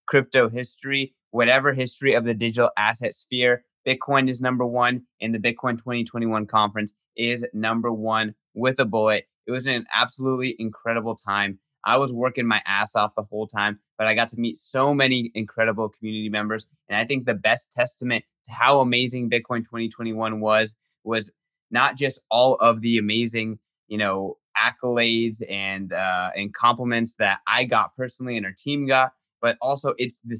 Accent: American